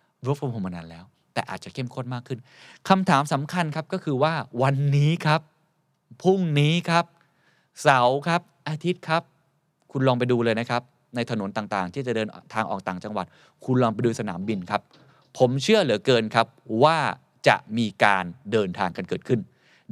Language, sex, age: Thai, male, 20-39